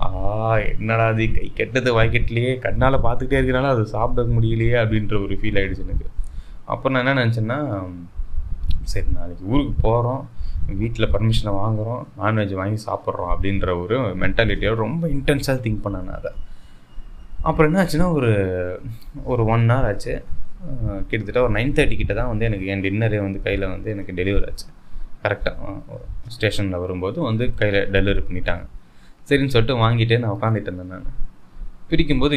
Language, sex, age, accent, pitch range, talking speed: Tamil, male, 20-39, native, 95-120 Hz, 135 wpm